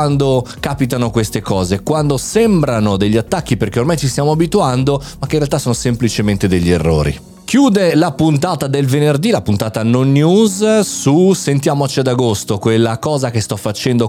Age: 30-49